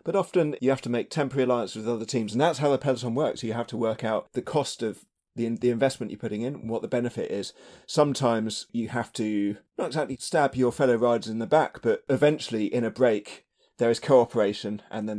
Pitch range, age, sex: 110-135 Hz, 30-49, male